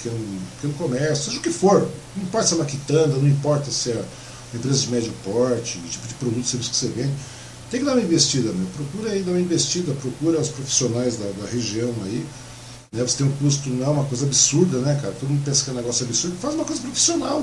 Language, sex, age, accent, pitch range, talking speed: Portuguese, male, 50-69, Brazilian, 120-170 Hz, 250 wpm